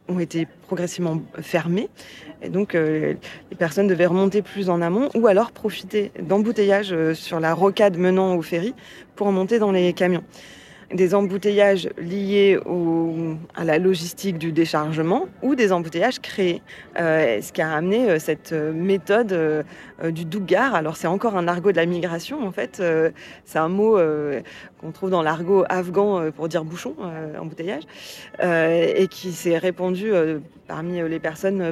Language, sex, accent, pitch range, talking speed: French, female, French, 165-195 Hz, 165 wpm